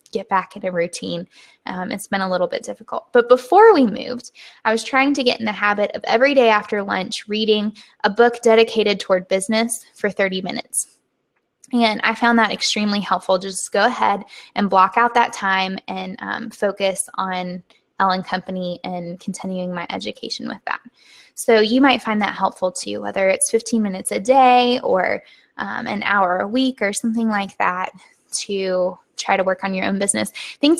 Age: 10-29